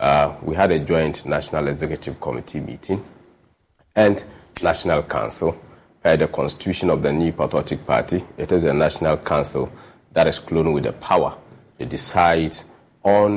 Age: 40-59